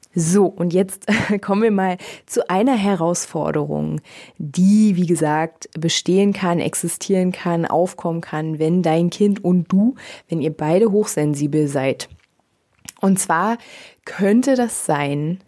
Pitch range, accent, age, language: 165-205 Hz, German, 20-39, German